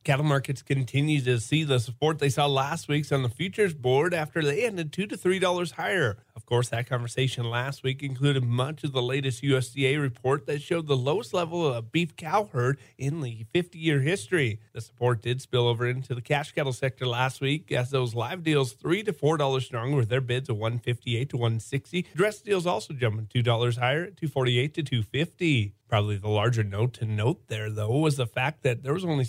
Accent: American